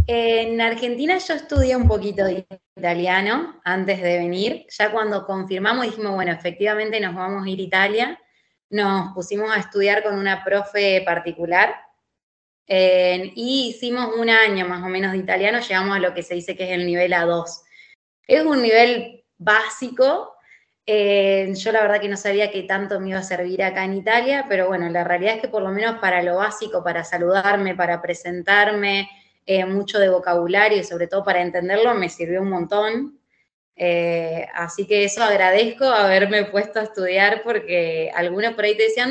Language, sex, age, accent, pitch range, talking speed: Spanish, female, 20-39, Argentinian, 185-225 Hz, 175 wpm